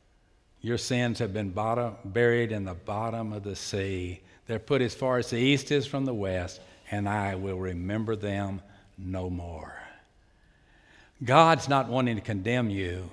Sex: male